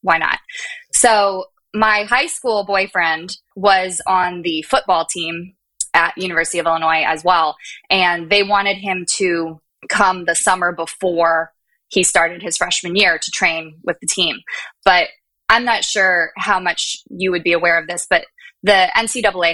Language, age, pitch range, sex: English, 20-39, 170-200 Hz, female